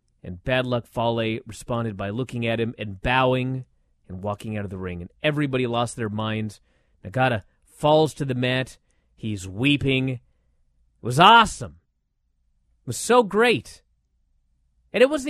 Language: English